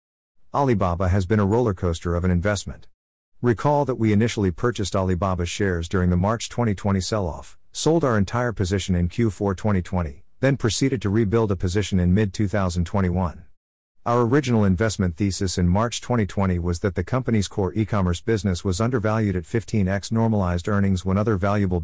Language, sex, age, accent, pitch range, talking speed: English, male, 50-69, American, 90-115 Hz, 160 wpm